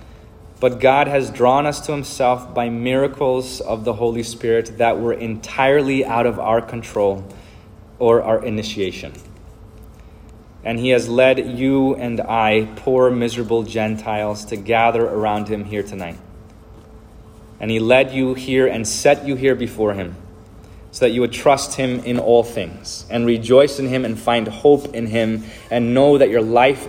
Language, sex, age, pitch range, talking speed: English, male, 20-39, 110-130 Hz, 165 wpm